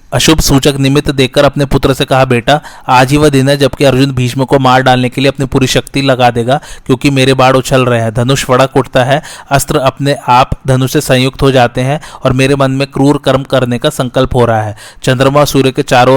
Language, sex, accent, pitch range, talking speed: Hindi, male, native, 125-140 Hz, 230 wpm